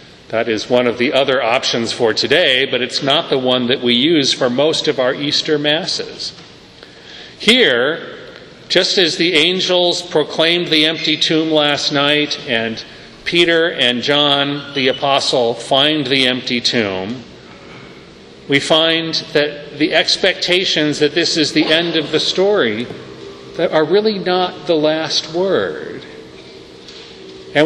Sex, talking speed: male, 140 wpm